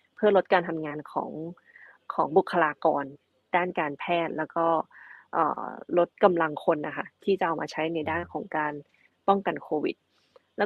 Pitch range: 155-195 Hz